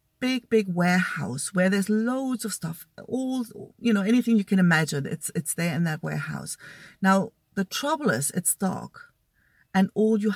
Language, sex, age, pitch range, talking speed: English, female, 40-59, 160-205 Hz, 175 wpm